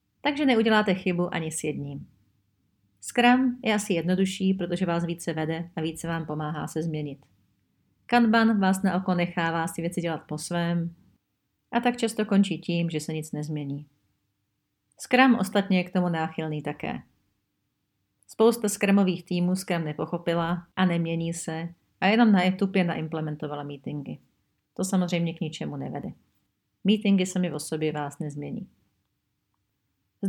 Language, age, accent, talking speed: Czech, 40-59, native, 145 wpm